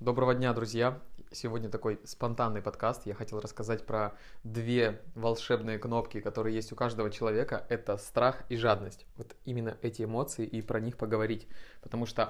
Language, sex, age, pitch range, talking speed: Russian, male, 20-39, 110-130 Hz, 160 wpm